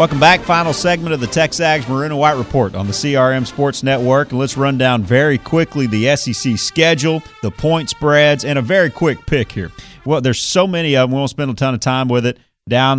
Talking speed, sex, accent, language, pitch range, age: 225 wpm, male, American, English, 110-140 Hz, 40-59